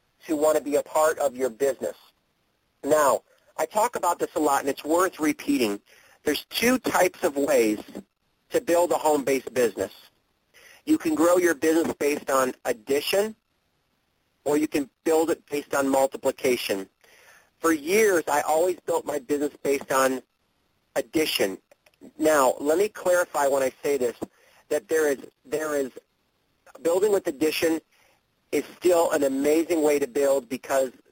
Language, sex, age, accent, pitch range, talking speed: English, male, 40-59, American, 140-170 Hz, 155 wpm